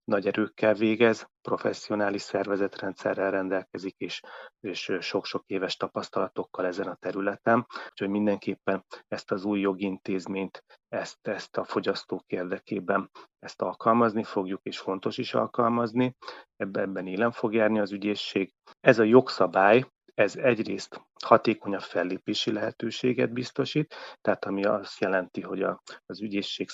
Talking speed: 125 wpm